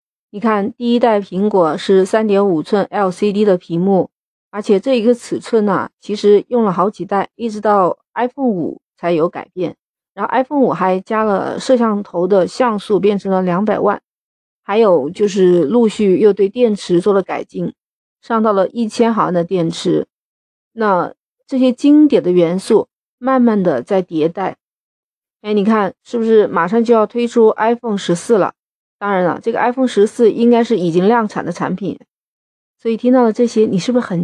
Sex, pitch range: female, 195-235 Hz